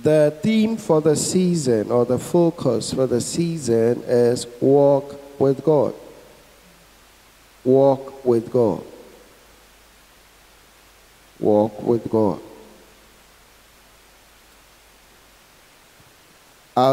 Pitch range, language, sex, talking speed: 125-165 Hz, English, male, 80 wpm